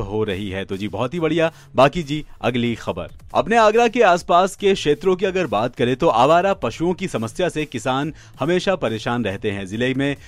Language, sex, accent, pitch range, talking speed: Hindi, male, native, 115-160 Hz, 205 wpm